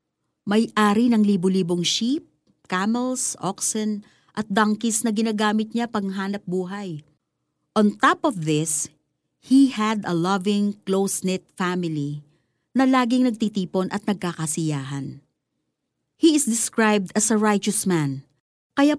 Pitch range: 185-245 Hz